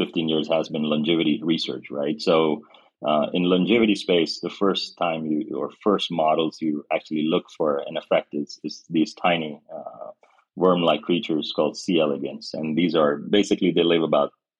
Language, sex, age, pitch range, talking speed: English, male, 30-49, 75-90 Hz, 175 wpm